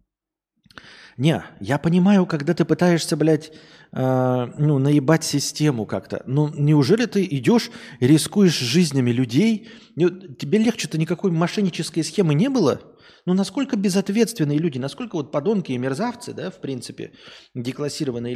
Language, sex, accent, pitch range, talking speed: Russian, male, native, 130-195 Hz, 130 wpm